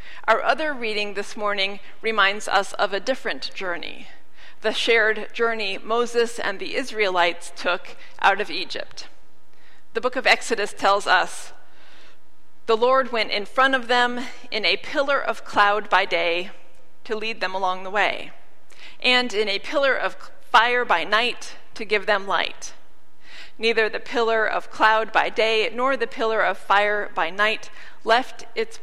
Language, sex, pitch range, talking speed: English, female, 190-230 Hz, 160 wpm